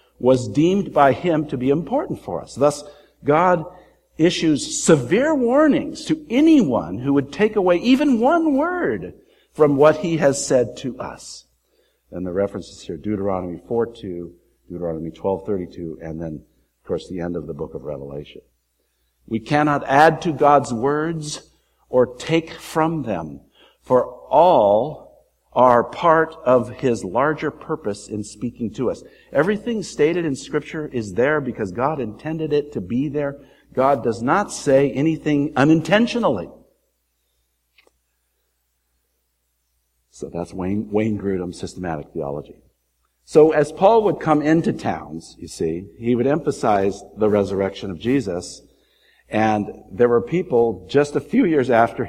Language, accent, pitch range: English, American, 95-155 Hz